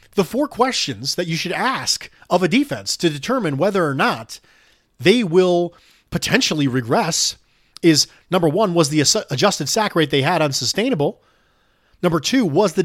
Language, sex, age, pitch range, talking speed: English, male, 30-49, 145-210 Hz, 160 wpm